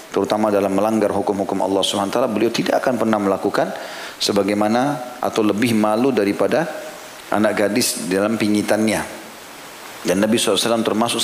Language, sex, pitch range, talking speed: Indonesian, male, 100-115 Hz, 130 wpm